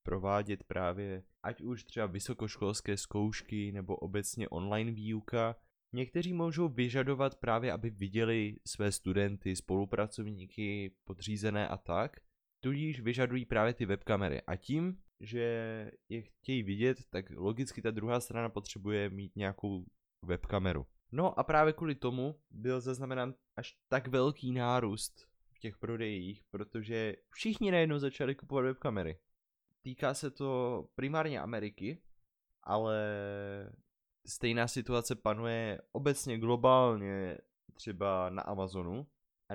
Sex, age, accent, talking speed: male, 20-39, native, 120 wpm